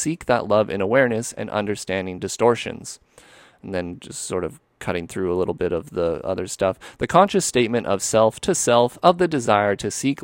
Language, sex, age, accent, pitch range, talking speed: English, male, 30-49, American, 105-145 Hz, 200 wpm